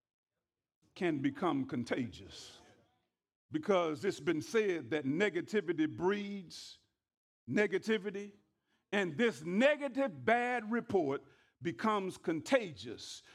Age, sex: 50-69, male